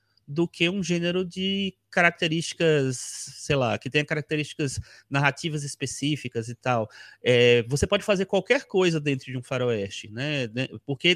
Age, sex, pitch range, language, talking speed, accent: 30-49, male, 130-185 Hz, Portuguese, 145 wpm, Brazilian